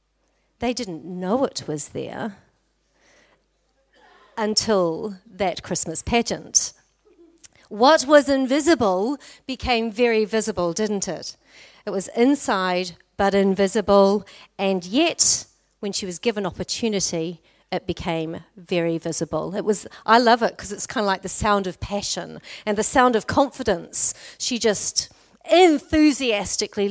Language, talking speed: English, 125 wpm